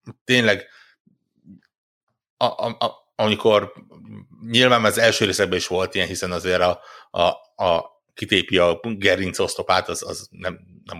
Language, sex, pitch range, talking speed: Hungarian, male, 90-105 Hz, 140 wpm